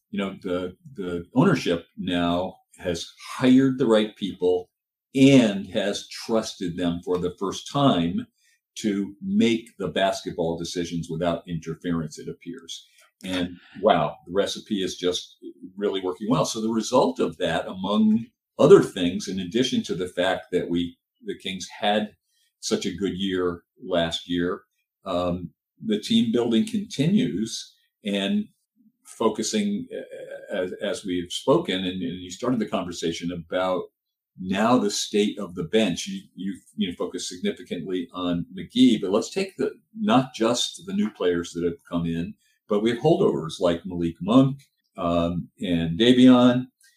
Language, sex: English, male